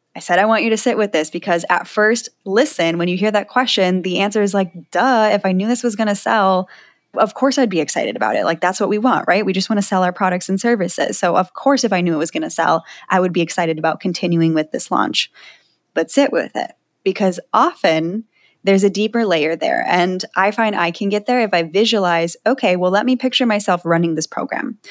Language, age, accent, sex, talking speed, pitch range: English, 10-29, American, female, 250 wpm, 175-220 Hz